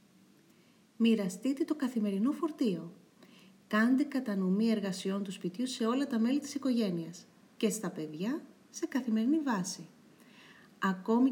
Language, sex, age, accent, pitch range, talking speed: Greek, female, 40-59, native, 195-260 Hz, 115 wpm